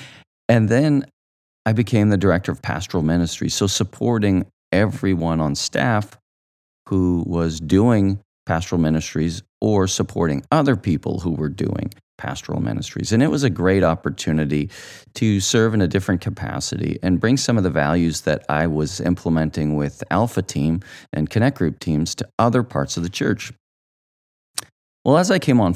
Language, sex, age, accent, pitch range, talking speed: English, male, 40-59, American, 85-120 Hz, 160 wpm